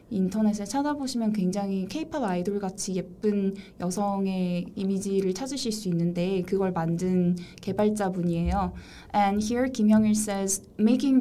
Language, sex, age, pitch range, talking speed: English, female, 20-39, 185-230 Hz, 105 wpm